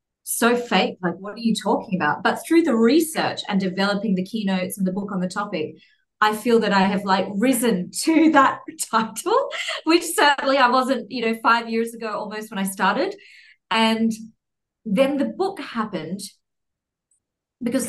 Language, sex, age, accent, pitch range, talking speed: English, female, 30-49, Australian, 190-235 Hz, 170 wpm